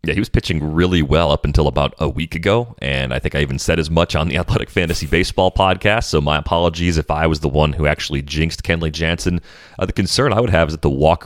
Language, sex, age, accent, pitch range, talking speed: English, male, 30-49, American, 75-85 Hz, 260 wpm